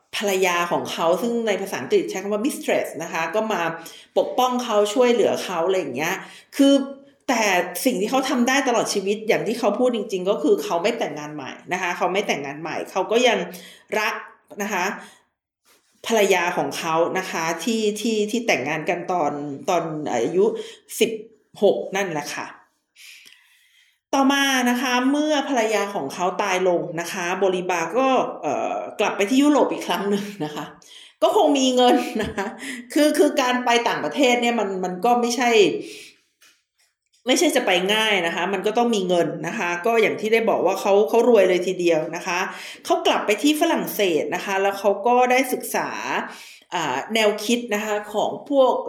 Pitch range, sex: 185-250 Hz, female